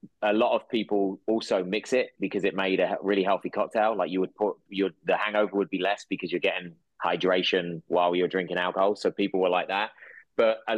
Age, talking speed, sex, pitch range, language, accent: 20-39, 215 wpm, male, 90-105 Hz, English, British